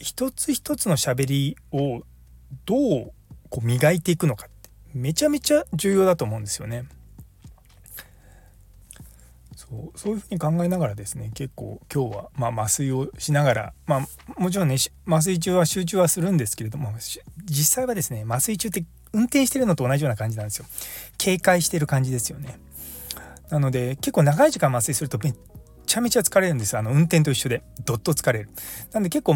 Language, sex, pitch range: Japanese, male, 110-180 Hz